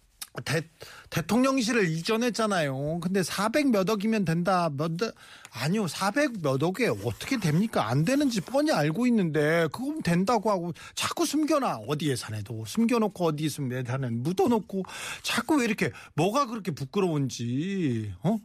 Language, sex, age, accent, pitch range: Korean, male, 40-59, native, 150-215 Hz